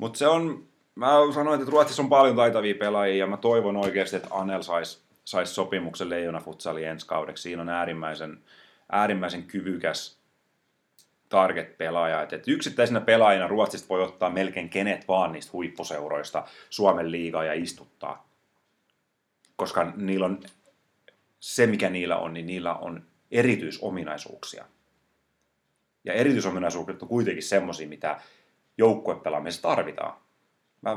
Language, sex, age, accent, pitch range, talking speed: Finnish, male, 30-49, native, 85-100 Hz, 125 wpm